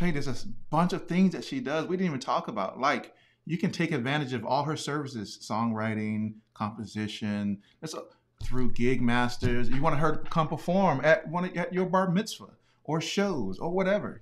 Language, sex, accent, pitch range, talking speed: English, male, American, 110-145 Hz, 200 wpm